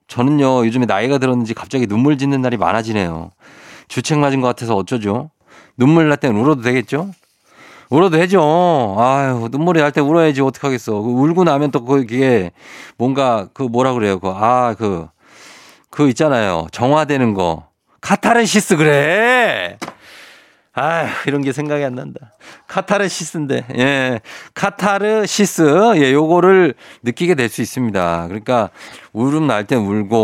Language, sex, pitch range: Korean, male, 110-155 Hz